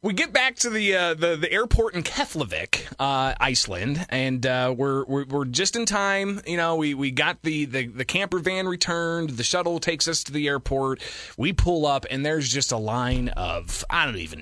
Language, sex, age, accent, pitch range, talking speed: English, male, 30-49, American, 125-165 Hz, 210 wpm